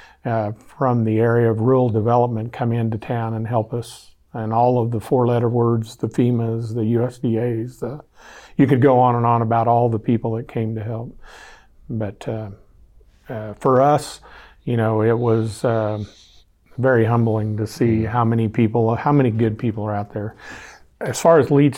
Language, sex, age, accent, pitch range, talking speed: English, male, 50-69, American, 115-130 Hz, 180 wpm